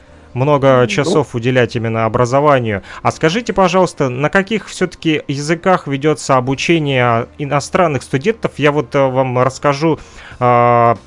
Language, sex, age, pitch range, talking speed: Russian, male, 30-49, 125-165 Hz, 115 wpm